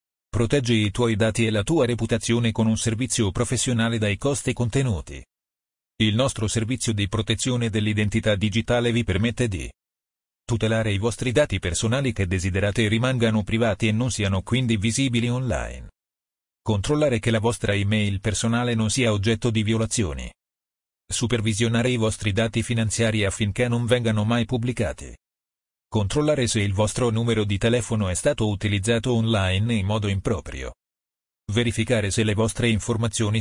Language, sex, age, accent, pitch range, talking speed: Italian, male, 40-59, native, 100-120 Hz, 145 wpm